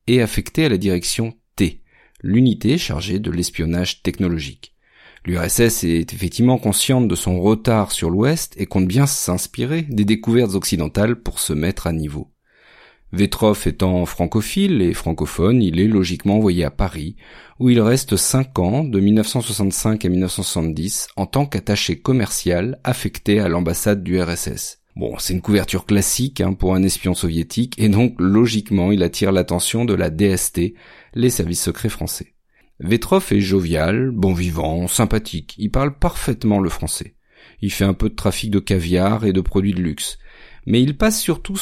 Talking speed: 160 wpm